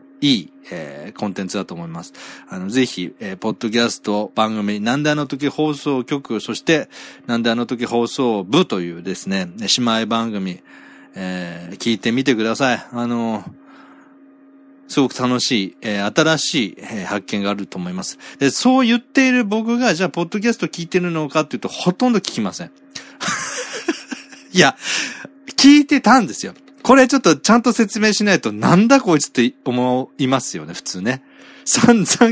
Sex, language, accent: male, Japanese, native